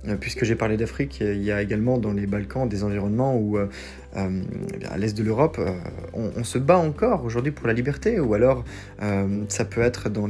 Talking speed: 210 wpm